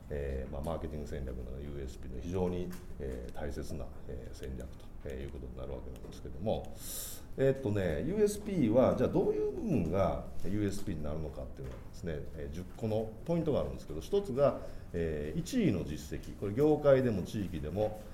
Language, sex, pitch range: Japanese, male, 70-105 Hz